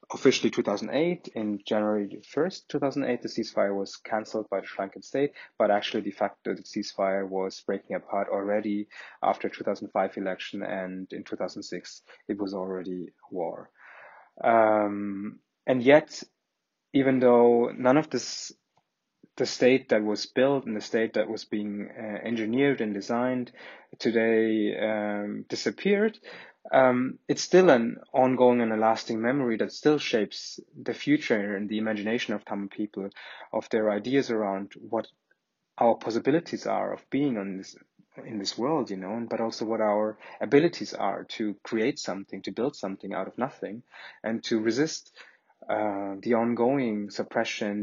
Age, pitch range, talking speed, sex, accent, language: 20-39, 100-120 Hz, 150 wpm, male, German, English